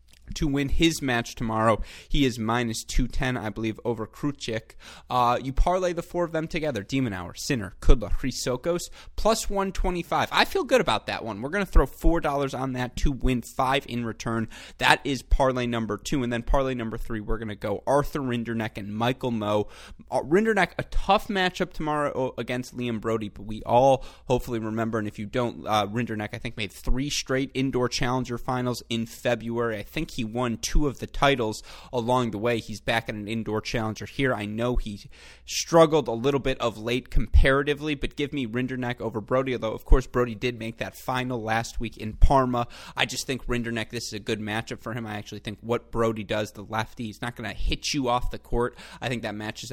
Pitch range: 110-130 Hz